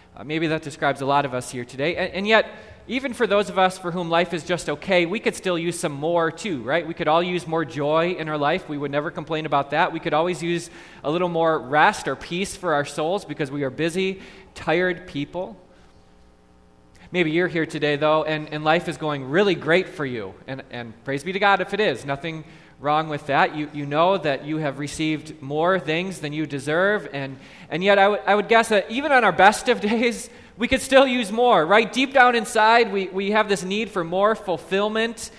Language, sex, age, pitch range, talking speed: English, male, 20-39, 150-200 Hz, 230 wpm